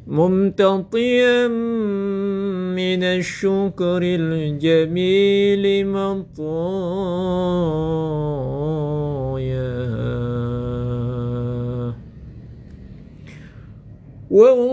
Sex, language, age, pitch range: male, Indonesian, 50-69, 195-285 Hz